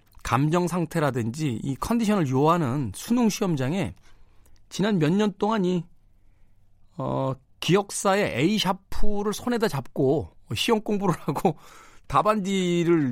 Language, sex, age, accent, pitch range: Korean, male, 40-59, native, 100-150 Hz